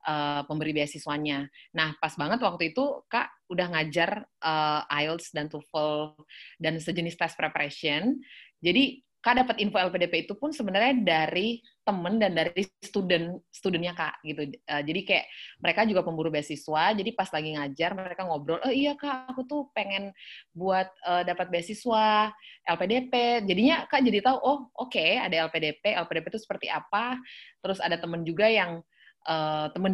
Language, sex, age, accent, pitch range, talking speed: Indonesian, female, 20-39, native, 165-230 Hz, 155 wpm